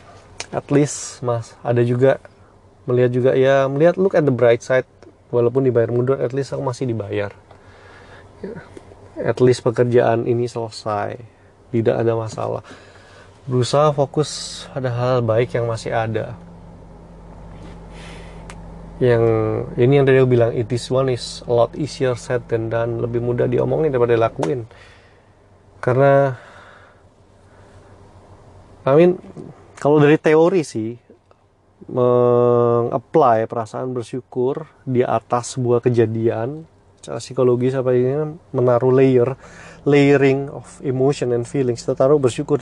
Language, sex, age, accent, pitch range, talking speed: Indonesian, male, 20-39, native, 100-130 Hz, 125 wpm